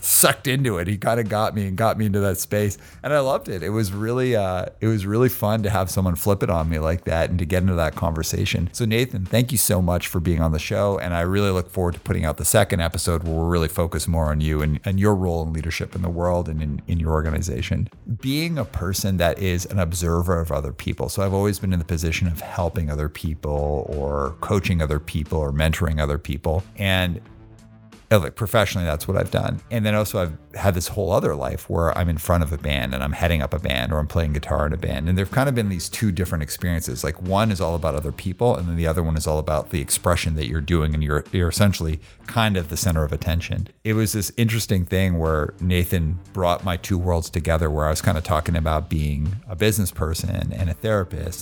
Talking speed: 250 wpm